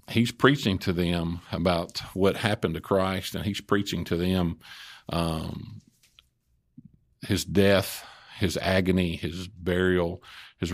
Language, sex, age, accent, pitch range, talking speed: English, male, 50-69, American, 85-100 Hz, 125 wpm